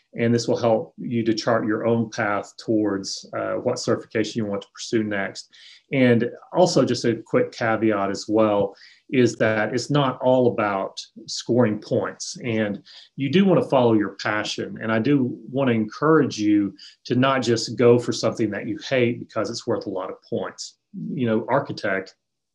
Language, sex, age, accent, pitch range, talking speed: English, male, 30-49, American, 110-125 Hz, 185 wpm